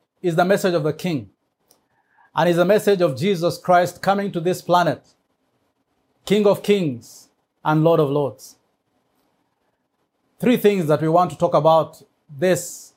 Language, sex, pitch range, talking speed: English, male, 150-195 Hz, 155 wpm